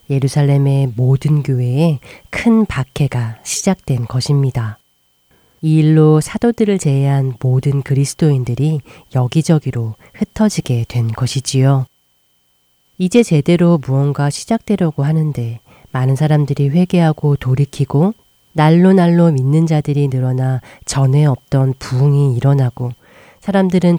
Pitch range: 125-160 Hz